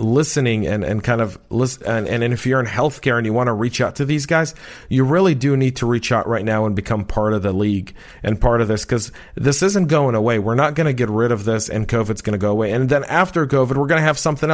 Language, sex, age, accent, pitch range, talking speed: English, male, 40-59, American, 110-135 Hz, 280 wpm